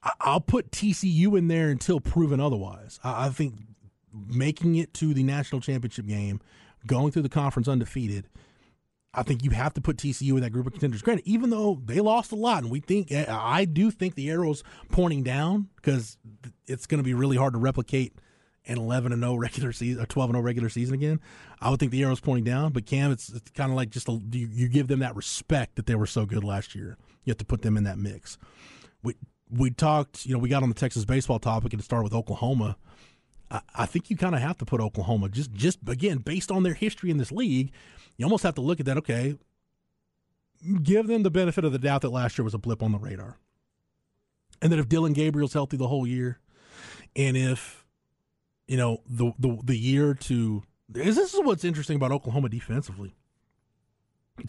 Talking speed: 215 wpm